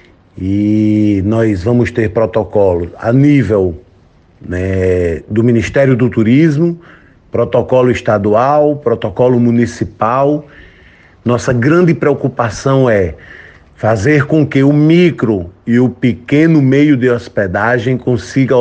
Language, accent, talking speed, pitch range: Portuguese, Brazilian, 105 wpm, 105-130 Hz